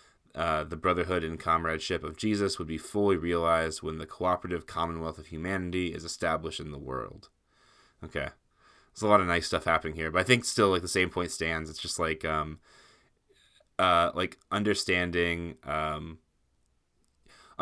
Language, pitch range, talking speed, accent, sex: English, 80-90 Hz, 165 wpm, American, male